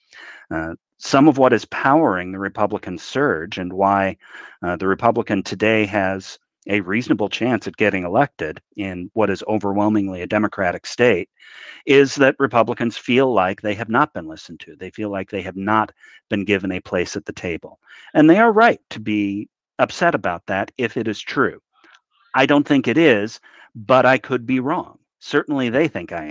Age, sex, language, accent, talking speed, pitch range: 50-69, male, English, American, 185 wpm, 105-130 Hz